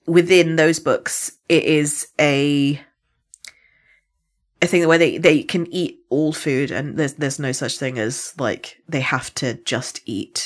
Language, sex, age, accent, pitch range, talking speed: English, female, 30-49, British, 130-160 Hz, 160 wpm